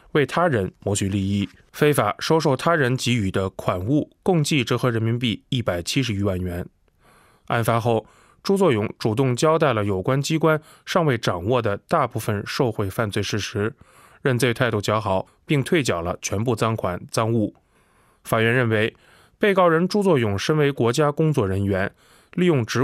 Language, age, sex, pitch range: Chinese, 20-39, male, 105-140 Hz